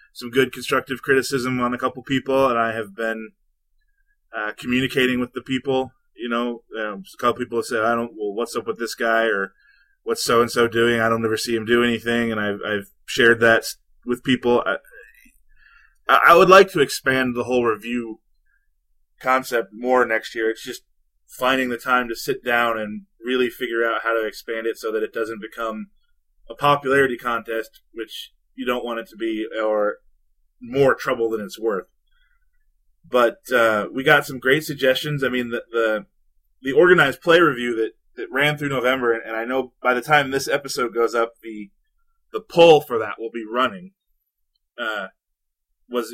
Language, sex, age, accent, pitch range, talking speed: English, male, 20-39, American, 110-130 Hz, 185 wpm